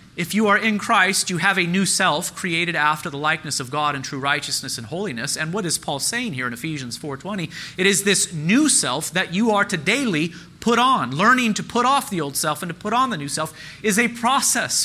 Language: English